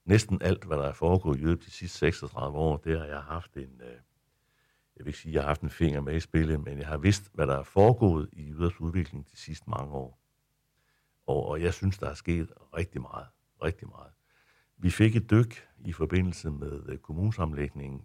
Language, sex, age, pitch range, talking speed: Danish, male, 60-79, 75-90 Hz, 210 wpm